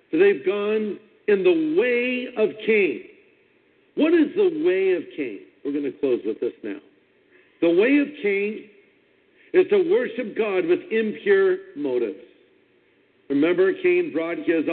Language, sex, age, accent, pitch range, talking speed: English, male, 50-69, American, 235-390 Hz, 145 wpm